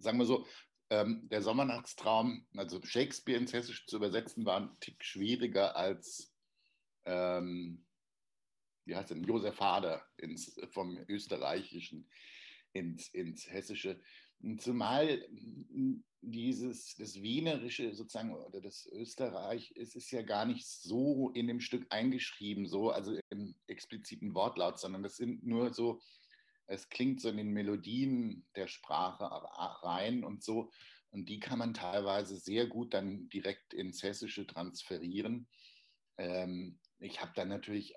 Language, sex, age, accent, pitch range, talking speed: German, male, 60-79, German, 90-120 Hz, 135 wpm